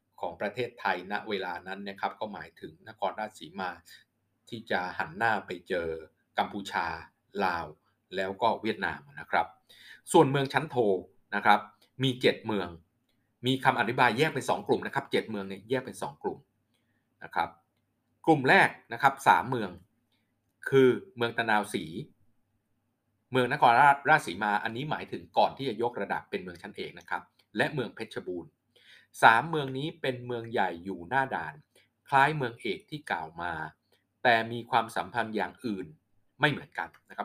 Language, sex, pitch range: Thai, male, 105-130 Hz